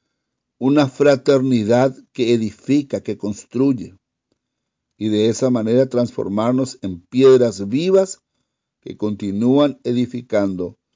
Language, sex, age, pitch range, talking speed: English, male, 60-79, 100-130 Hz, 95 wpm